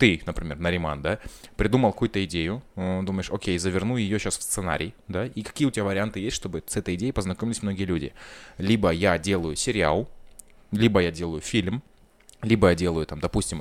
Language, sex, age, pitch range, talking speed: Russian, male, 20-39, 90-110 Hz, 180 wpm